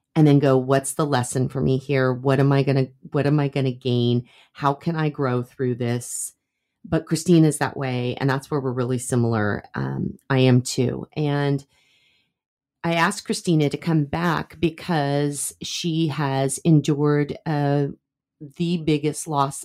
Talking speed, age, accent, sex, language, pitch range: 170 wpm, 30-49, American, female, English, 135-165 Hz